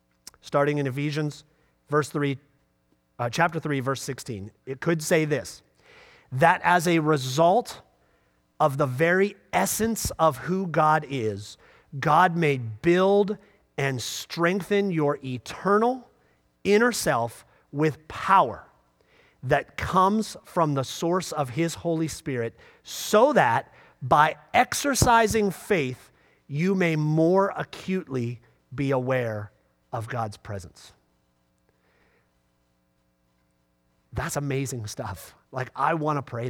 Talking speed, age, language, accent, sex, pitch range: 110 wpm, 40-59, English, American, male, 120-180 Hz